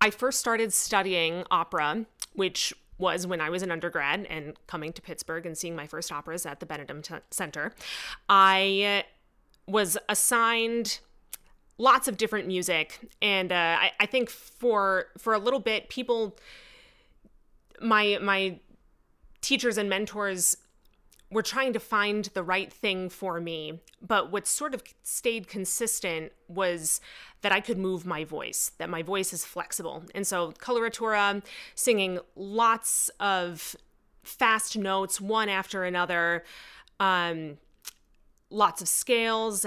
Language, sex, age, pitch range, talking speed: English, female, 30-49, 175-215 Hz, 135 wpm